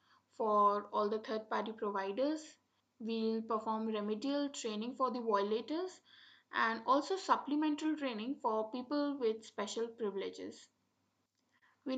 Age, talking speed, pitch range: 20-39, 115 wpm, 220-285 Hz